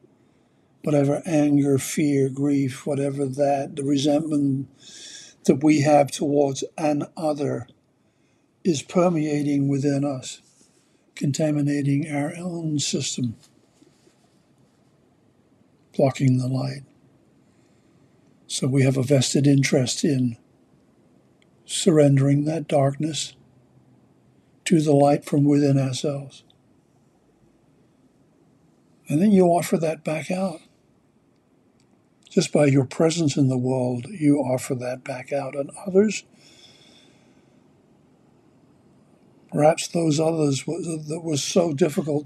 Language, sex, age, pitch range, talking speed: English, male, 60-79, 135-150 Hz, 100 wpm